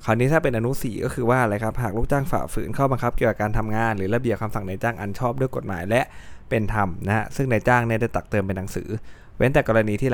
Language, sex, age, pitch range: Thai, male, 20-39, 105-125 Hz